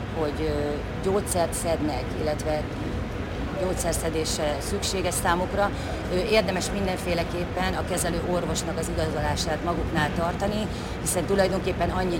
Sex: female